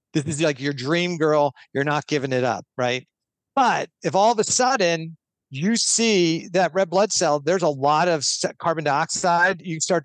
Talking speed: 190 wpm